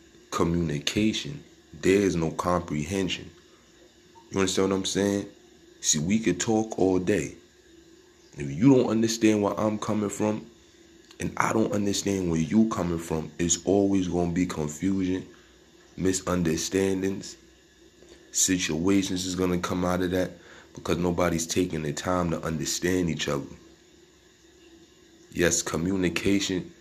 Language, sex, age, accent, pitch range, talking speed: English, male, 20-39, American, 90-115 Hz, 130 wpm